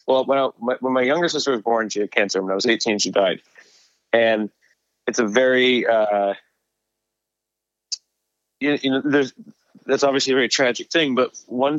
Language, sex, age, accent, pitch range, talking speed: English, male, 20-39, American, 105-125 Hz, 180 wpm